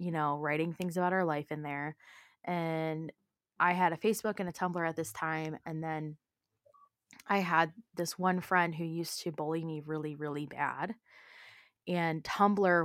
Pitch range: 155-195 Hz